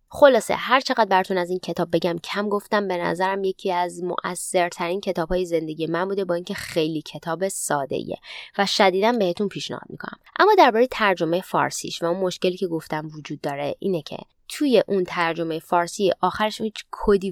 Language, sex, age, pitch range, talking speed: Persian, female, 20-39, 170-205 Hz, 180 wpm